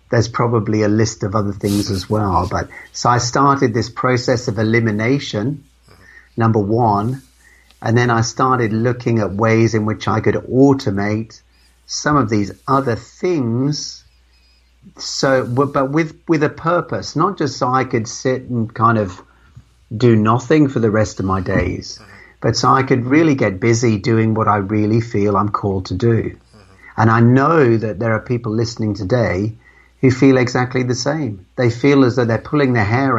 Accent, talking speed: British, 175 wpm